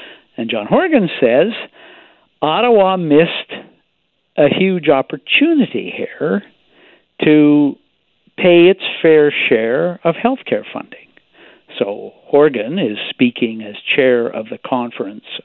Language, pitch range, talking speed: English, 130-195 Hz, 110 wpm